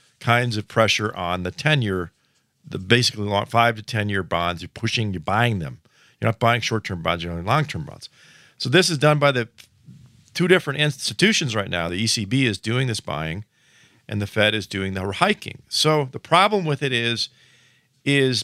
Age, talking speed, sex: 50-69, 185 wpm, male